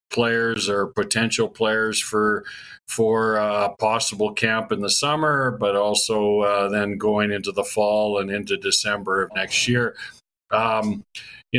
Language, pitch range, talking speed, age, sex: English, 110-125 Hz, 150 wpm, 50-69, male